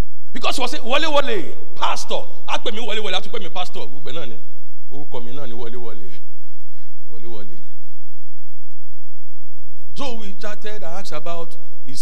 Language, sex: English, male